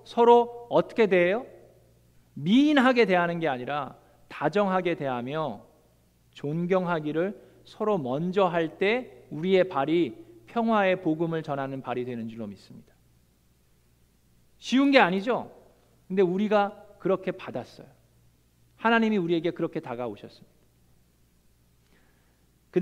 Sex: male